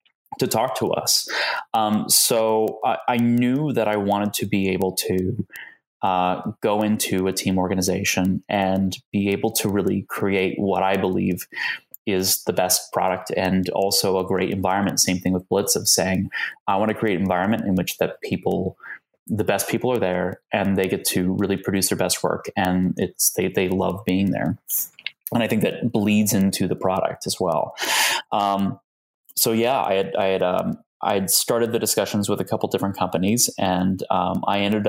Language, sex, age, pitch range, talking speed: English, male, 20-39, 95-105 Hz, 185 wpm